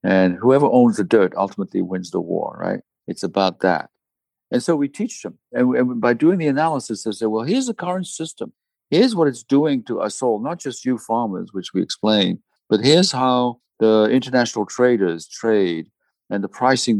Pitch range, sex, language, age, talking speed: 110-145 Hz, male, English, 60-79, 190 wpm